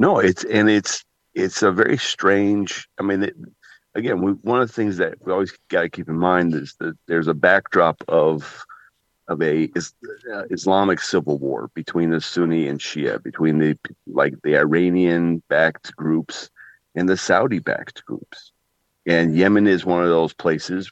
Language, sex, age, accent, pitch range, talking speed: English, male, 40-59, American, 75-95 Hz, 175 wpm